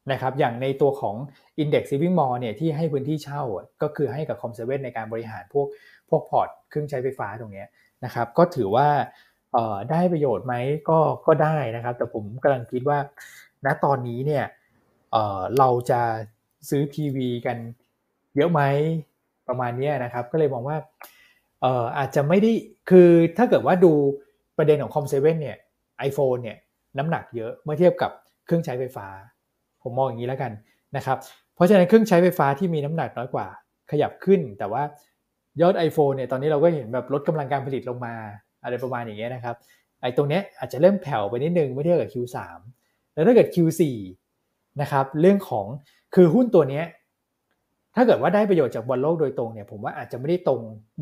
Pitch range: 125-155 Hz